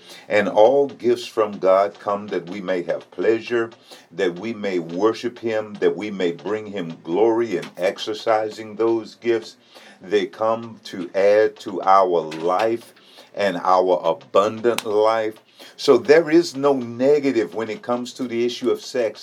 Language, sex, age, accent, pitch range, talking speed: English, male, 50-69, American, 95-130 Hz, 155 wpm